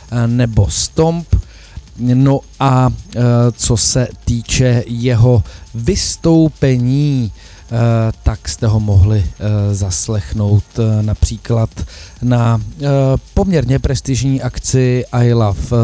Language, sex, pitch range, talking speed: Czech, male, 100-125 Hz, 100 wpm